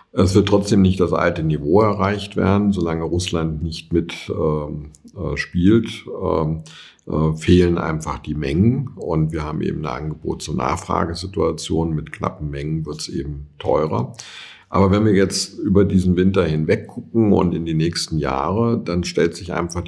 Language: German